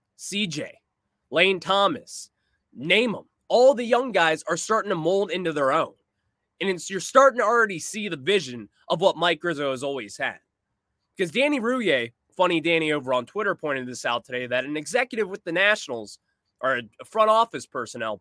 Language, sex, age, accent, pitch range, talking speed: English, male, 20-39, American, 150-215 Hz, 180 wpm